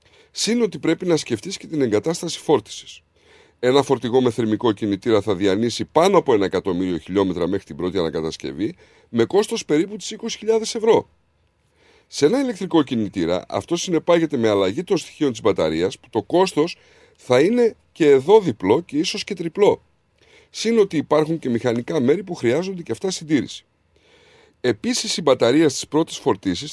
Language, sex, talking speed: Greek, male, 160 wpm